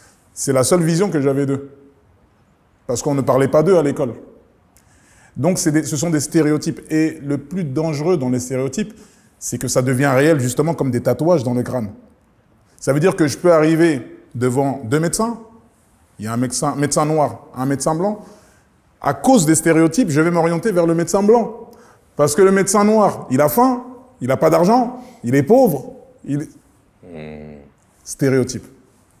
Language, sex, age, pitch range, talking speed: English, male, 30-49, 130-175 Hz, 185 wpm